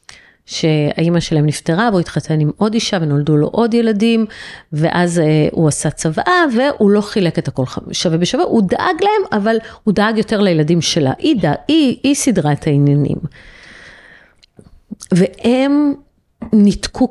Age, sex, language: 30-49, female, Hebrew